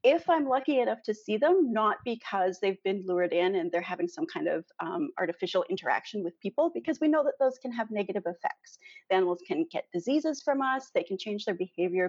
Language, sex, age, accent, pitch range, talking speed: English, female, 30-49, American, 185-270 Hz, 225 wpm